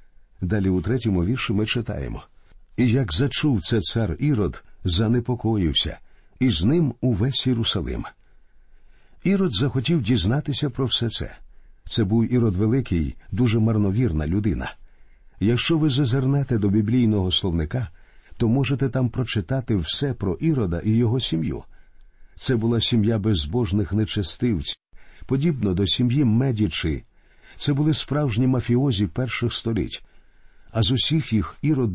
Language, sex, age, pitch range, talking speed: Ukrainian, male, 50-69, 100-130 Hz, 125 wpm